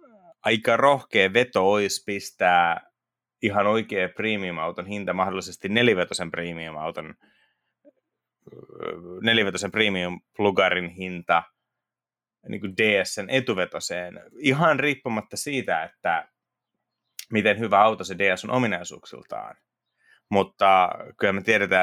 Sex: male